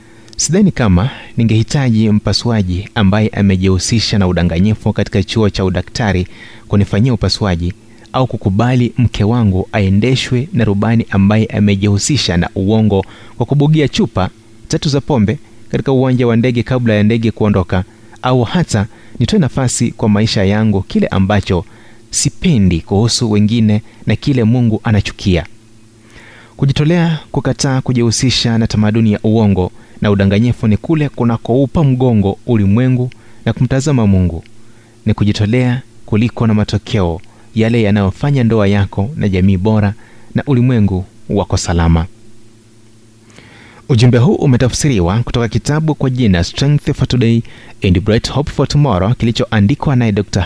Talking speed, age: 125 wpm, 30-49